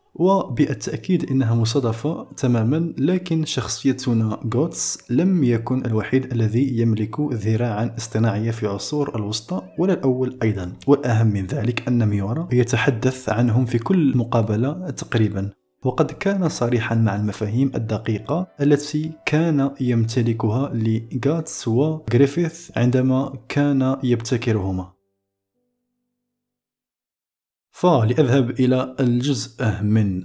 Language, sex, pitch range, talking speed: Arabic, male, 110-155 Hz, 95 wpm